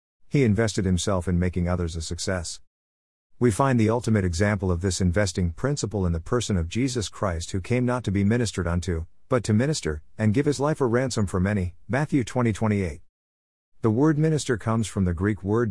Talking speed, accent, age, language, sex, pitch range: 200 wpm, American, 50-69, English, male, 85-115 Hz